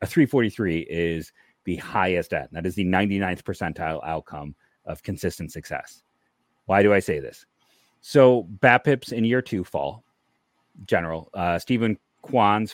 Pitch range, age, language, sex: 85-115 Hz, 30-49, English, male